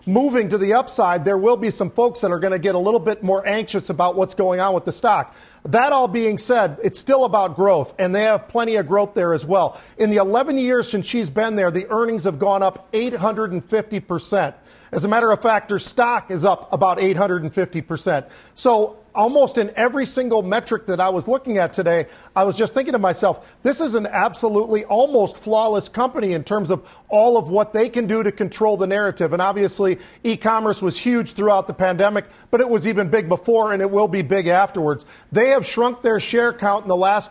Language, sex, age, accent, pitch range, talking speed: English, male, 40-59, American, 190-225 Hz, 230 wpm